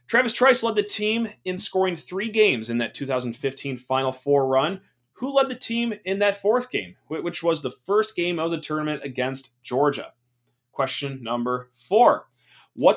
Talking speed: 170 wpm